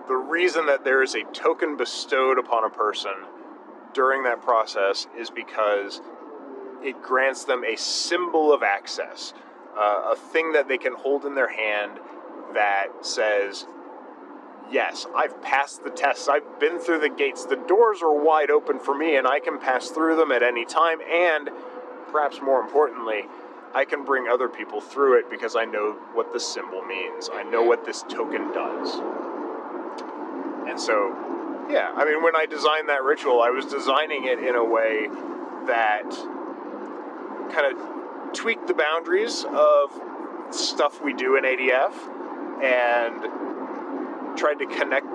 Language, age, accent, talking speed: English, 30-49, American, 155 wpm